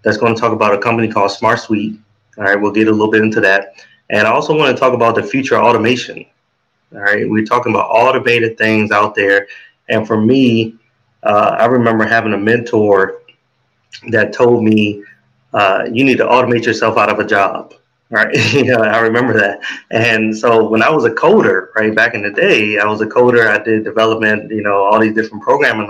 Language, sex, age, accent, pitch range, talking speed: English, male, 30-49, American, 105-120 Hz, 205 wpm